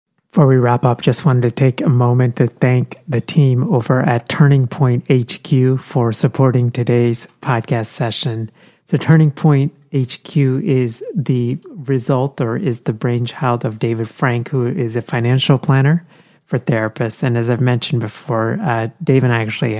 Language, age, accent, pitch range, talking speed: English, 30-49, American, 115-140 Hz, 165 wpm